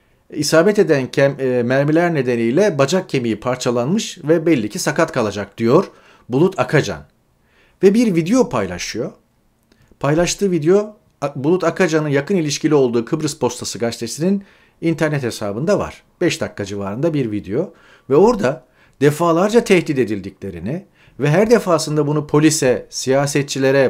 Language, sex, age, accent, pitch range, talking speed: Turkish, male, 40-59, native, 115-170 Hz, 120 wpm